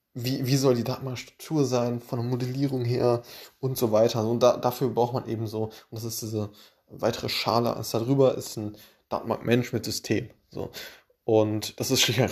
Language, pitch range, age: German, 110-130 Hz, 20-39